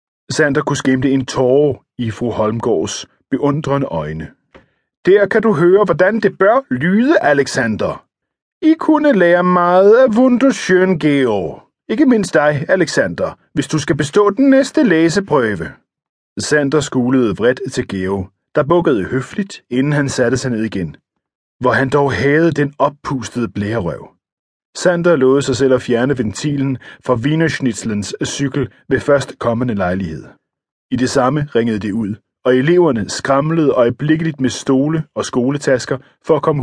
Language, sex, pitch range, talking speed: Danish, male, 125-160 Hz, 145 wpm